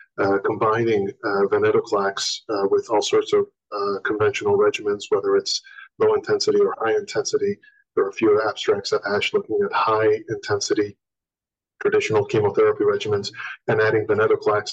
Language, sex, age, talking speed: English, male, 40-59, 135 wpm